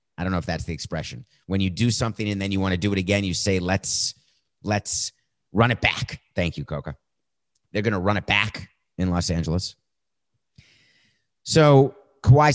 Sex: male